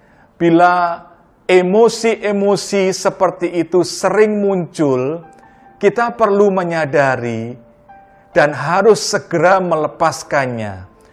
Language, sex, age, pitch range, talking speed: Indonesian, male, 40-59, 140-220 Hz, 70 wpm